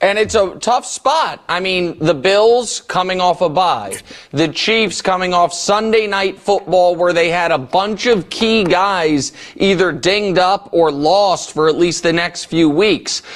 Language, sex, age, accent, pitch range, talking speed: English, male, 30-49, American, 170-210 Hz, 180 wpm